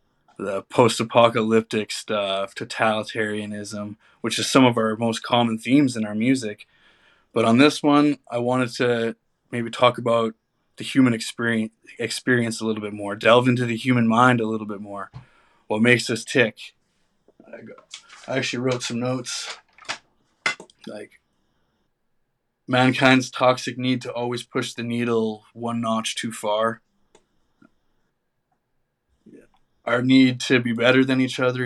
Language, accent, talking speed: English, American, 135 wpm